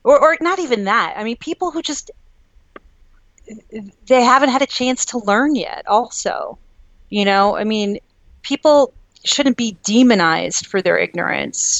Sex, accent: female, American